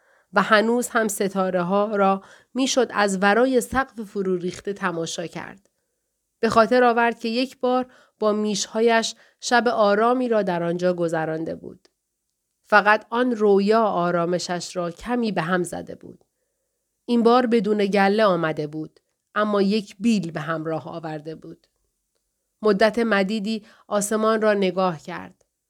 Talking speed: 135 wpm